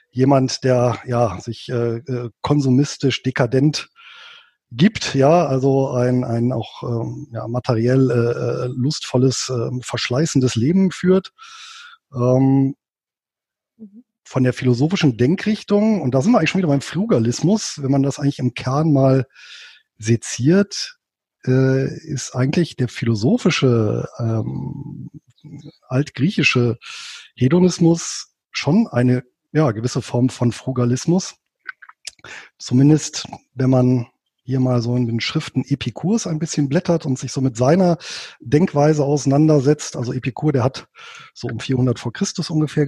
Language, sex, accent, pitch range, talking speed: German, male, German, 125-160 Hz, 125 wpm